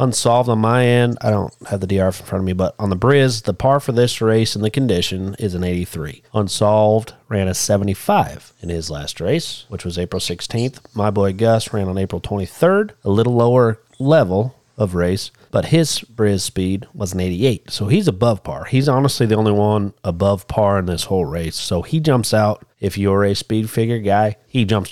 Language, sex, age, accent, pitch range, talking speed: English, male, 30-49, American, 95-125 Hz, 210 wpm